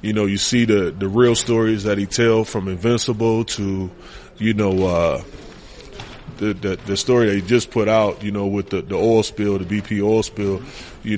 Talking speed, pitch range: 205 wpm, 105-125 Hz